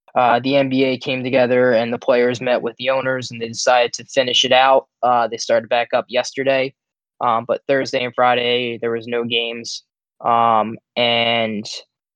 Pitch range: 120-145 Hz